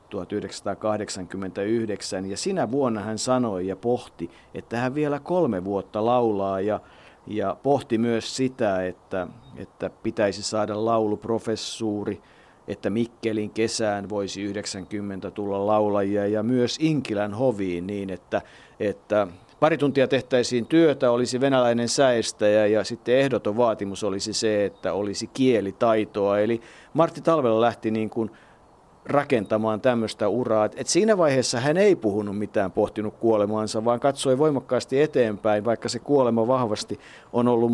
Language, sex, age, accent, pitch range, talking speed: Finnish, male, 50-69, native, 100-125 Hz, 130 wpm